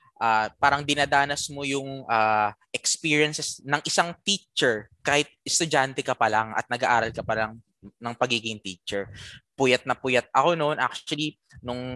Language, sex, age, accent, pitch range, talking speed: Filipino, male, 20-39, native, 120-150 Hz, 150 wpm